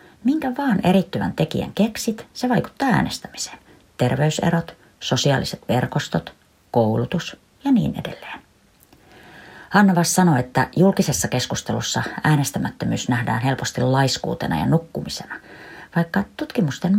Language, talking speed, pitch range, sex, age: Finnish, 100 wpm, 135-230 Hz, female, 30-49